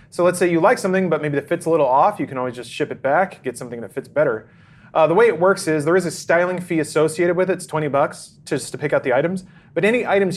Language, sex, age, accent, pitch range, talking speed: English, male, 30-49, American, 130-165 Hz, 295 wpm